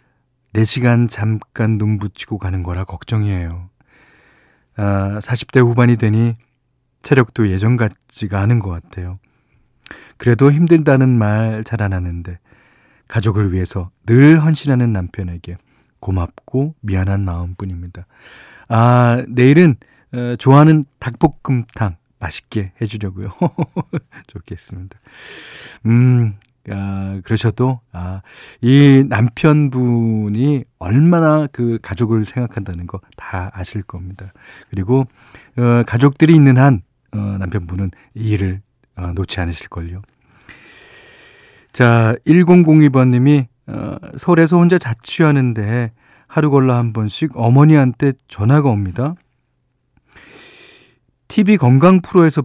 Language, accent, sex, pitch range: Korean, native, male, 100-140 Hz